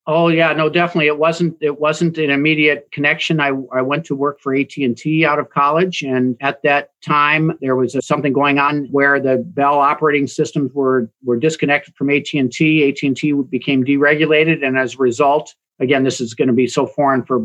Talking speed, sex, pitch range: 215 wpm, male, 130-150 Hz